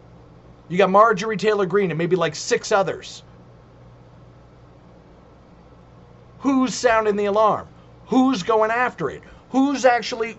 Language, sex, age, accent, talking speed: English, male, 40-59, American, 115 wpm